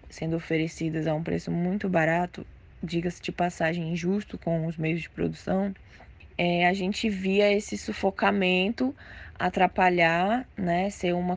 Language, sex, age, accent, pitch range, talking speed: Portuguese, female, 10-29, Brazilian, 165-190 Hz, 130 wpm